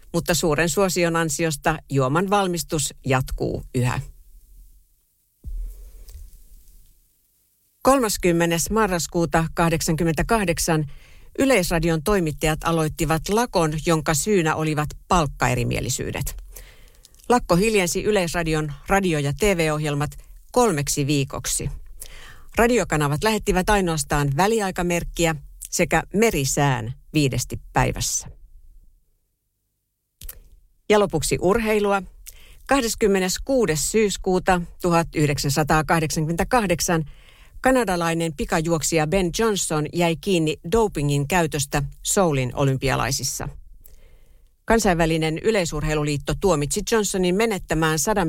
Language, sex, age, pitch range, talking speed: Finnish, female, 60-79, 145-185 Hz, 70 wpm